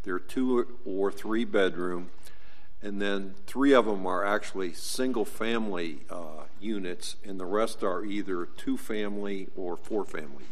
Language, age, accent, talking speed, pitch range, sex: English, 50-69, American, 155 wpm, 95-115 Hz, male